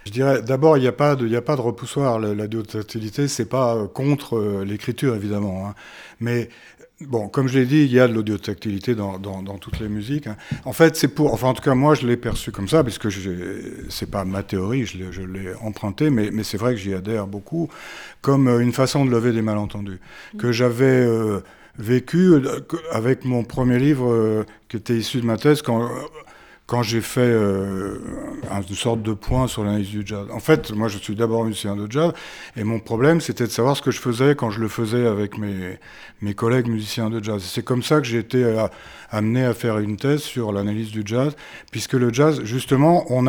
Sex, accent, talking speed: male, French, 220 wpm